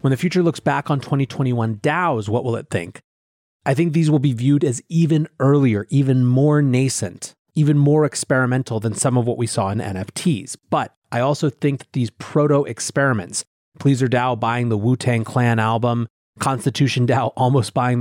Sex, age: male, 30-49